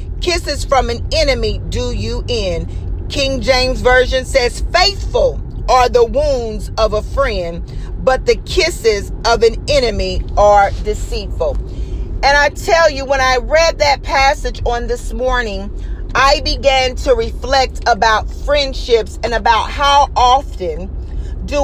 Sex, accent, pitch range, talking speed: female, American, 230-315 Hz, 135 wpm